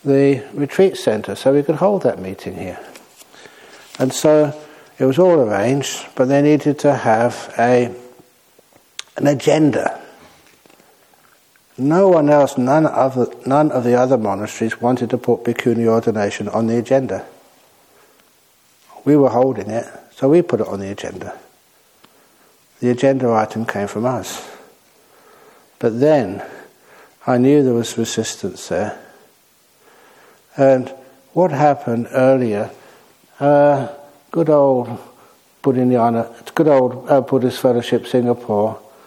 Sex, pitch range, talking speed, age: male, 120-150 Hz, 125 wpm, 60-79